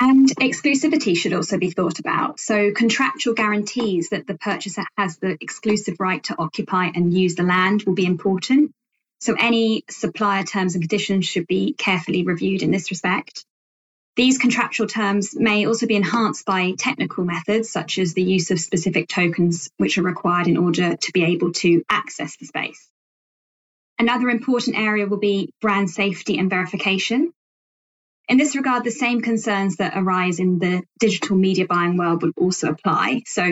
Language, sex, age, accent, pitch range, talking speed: English, female, 20-39, British, 180-210 Hz, 170 wpm